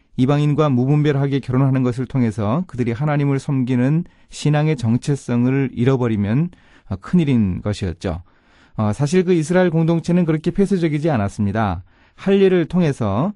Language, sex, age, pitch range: Korean, male, 30-49, 110-150 Hz